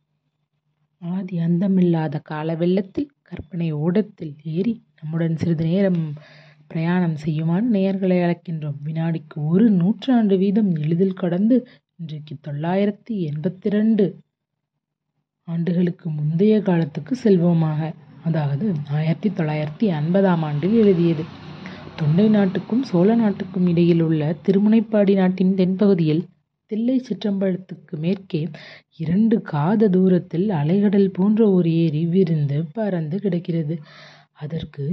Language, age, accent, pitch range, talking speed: Tamil, 30-49, native, 155-200 Hz, 90 wpm